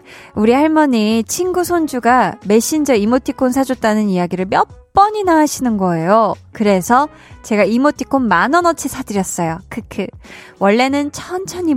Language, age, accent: Korean, 20-39, native